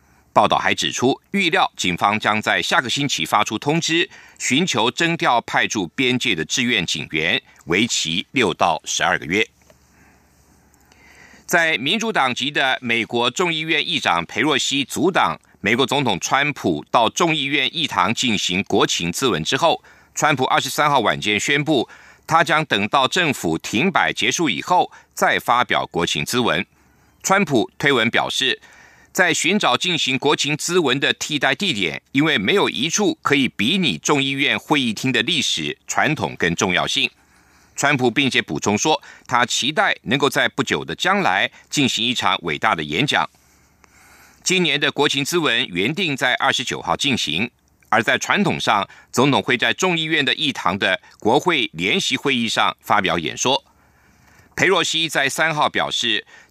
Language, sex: German, male